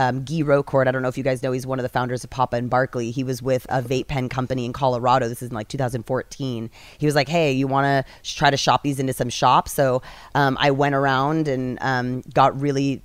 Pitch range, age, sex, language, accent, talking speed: 130-140 Hz, 20-39, female, English, American, 255 wpm